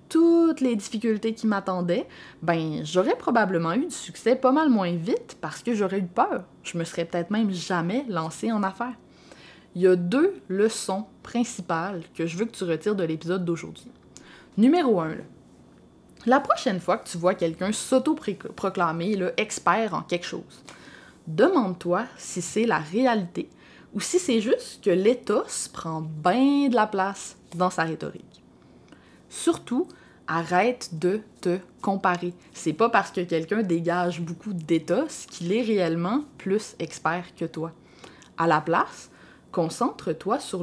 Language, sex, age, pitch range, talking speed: French, female, 20-39, 175-245 Hz, 155 wpm